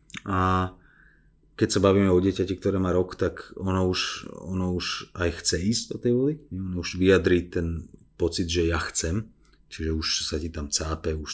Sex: male